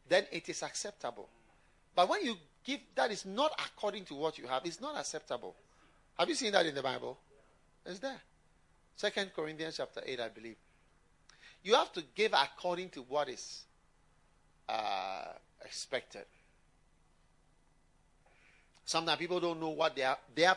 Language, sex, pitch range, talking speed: English, male, 130-180 Hz, 145 wpm